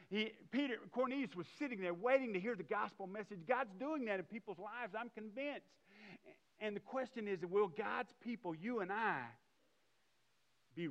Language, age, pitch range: English, 50-69, 140-195 Hz